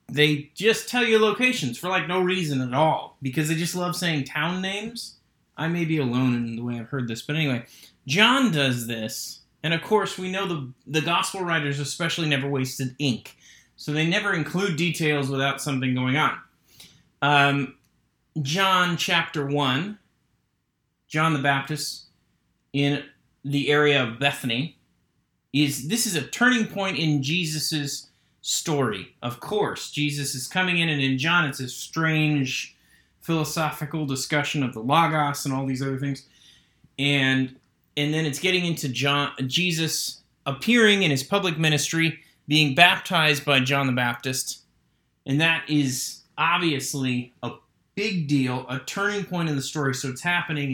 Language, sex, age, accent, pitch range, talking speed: English, male, 30-49, American, 135-170 Hz, 155 wpm